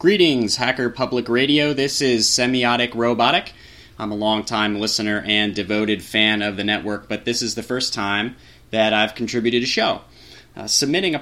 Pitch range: 100-125 Hz